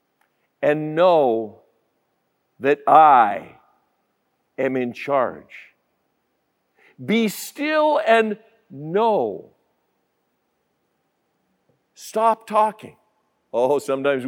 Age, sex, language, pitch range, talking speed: 50-69, male, English, 140-210 Hz, 65 wpm